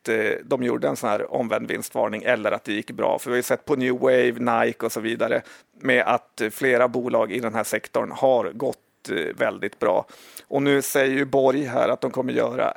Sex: male